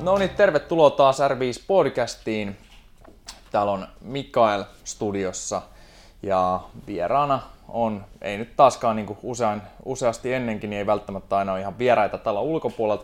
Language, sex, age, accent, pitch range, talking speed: Finnish, male, 20-39, native, 95-130 Hz, 135 wpm